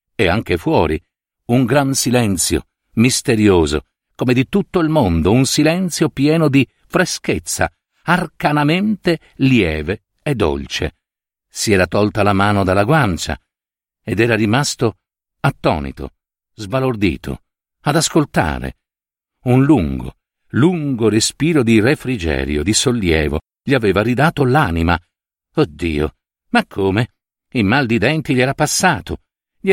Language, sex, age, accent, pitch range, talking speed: Italian, male, 50-69, native, 100-165 Hz, 115 wpm